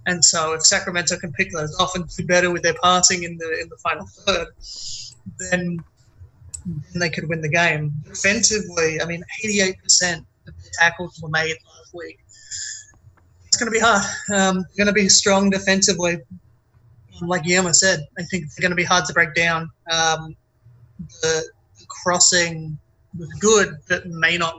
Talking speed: 175 wpm